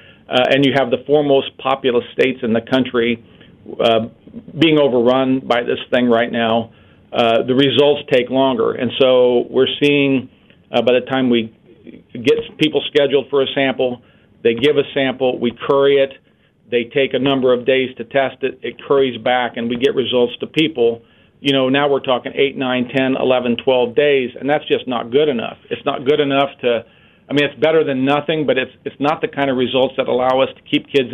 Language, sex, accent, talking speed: English, male, American, 205 wpm